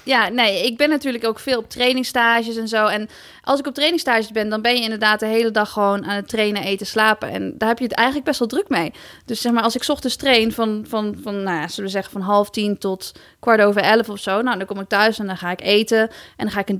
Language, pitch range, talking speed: Dutch, 205-235 Hz, 270 wpm